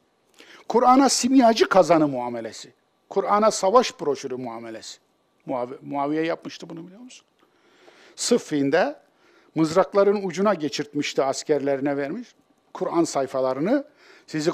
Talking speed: 95 wpm